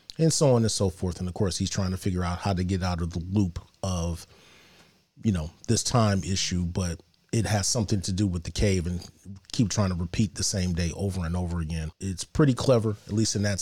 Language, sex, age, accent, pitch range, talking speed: English, male, 30-49, American, 90-105 Hz, 240 wpm